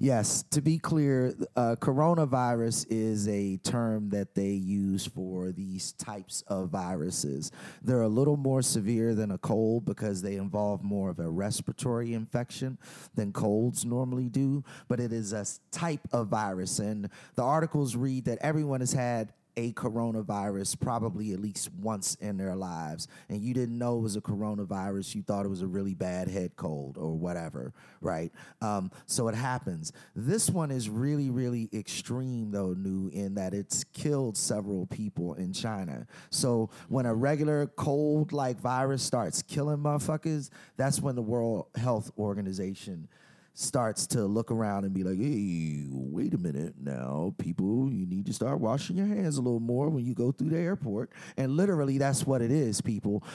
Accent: American